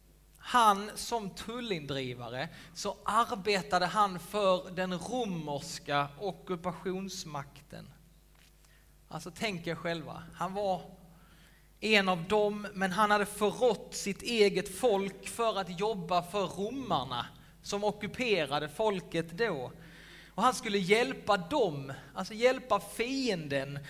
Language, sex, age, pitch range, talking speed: Swedish, male, 30-49, 165-210 Hz, 110 wpm